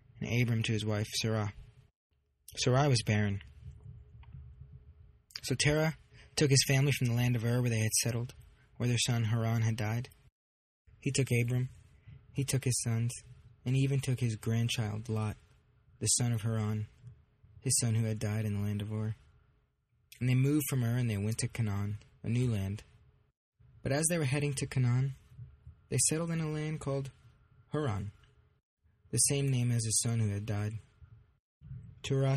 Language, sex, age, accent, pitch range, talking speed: English, male, 20-39, American, 110-130 Hz, 170 wpm